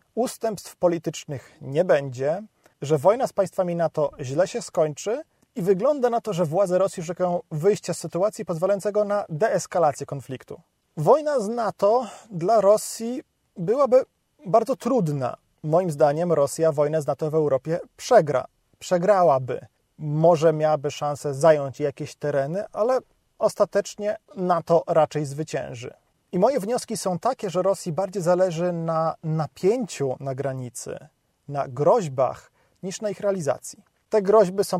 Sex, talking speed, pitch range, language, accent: male, 135 wpm, 150-205 Hz, Polish, native